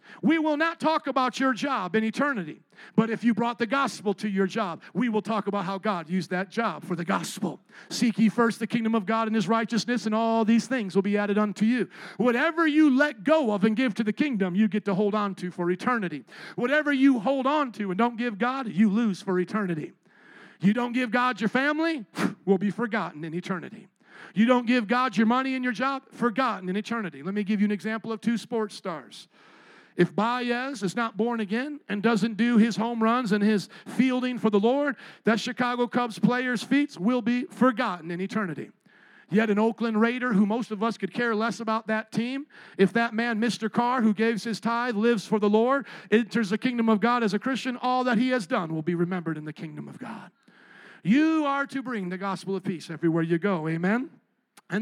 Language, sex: English, male